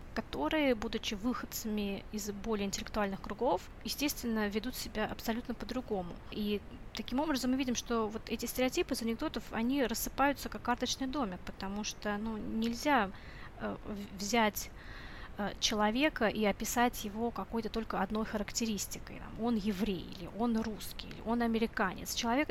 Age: 20-39